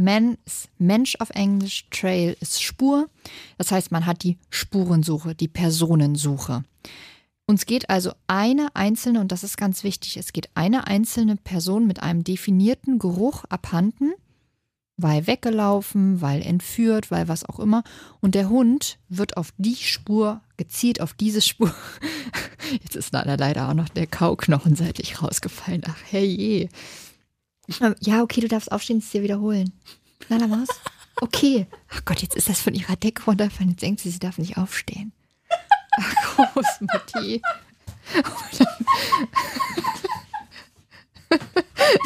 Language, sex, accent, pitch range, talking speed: German, female, German, 180-260 Hz, 140 wpm